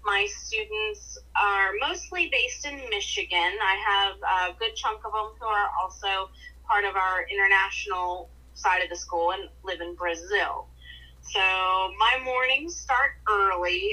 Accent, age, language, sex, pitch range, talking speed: American, 30-49, English, female, 180-290 Hz, 145 wpm